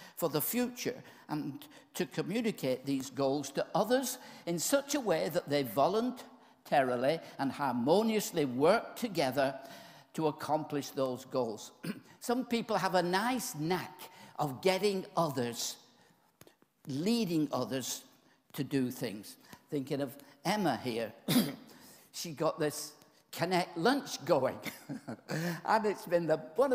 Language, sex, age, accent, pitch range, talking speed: English, male, 60-79, British, 145-220 Hz, 120 wpm